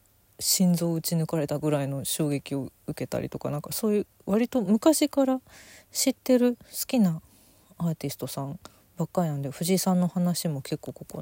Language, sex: Japanese, female